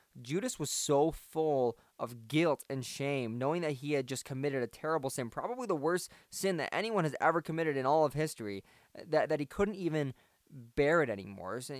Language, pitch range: English, 120-145 Hz